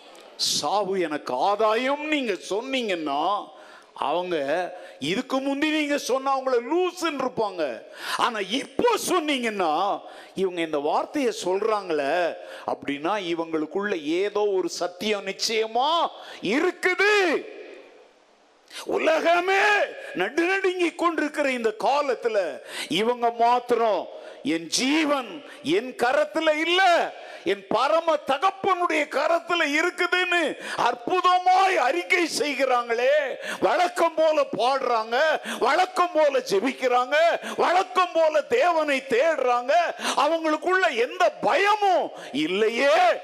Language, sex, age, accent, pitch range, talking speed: Tamil, male, 50-69, native, 225-355 Hz, 60 wpm